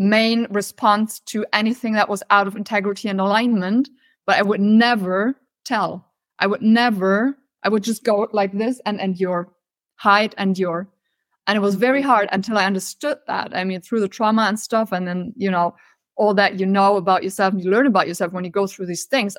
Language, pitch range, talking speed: English, 195-240 Hz, 205 wpm